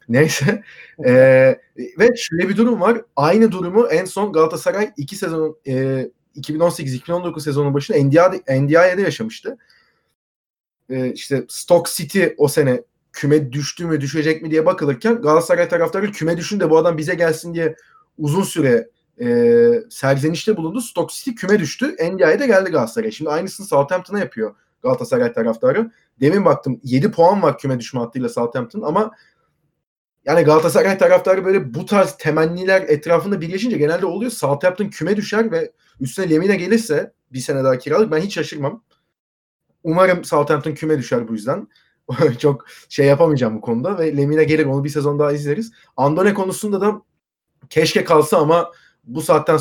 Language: Turkish